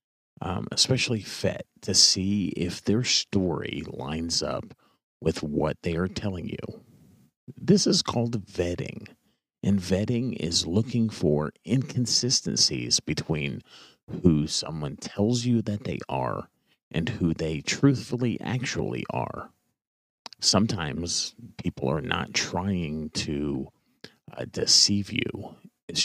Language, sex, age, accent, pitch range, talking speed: English, male, 40-59, American, 80-115 Hz, 115 wpm